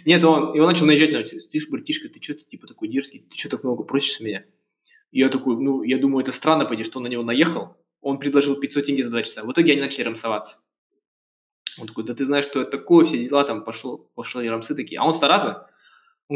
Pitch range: 115-155 Hz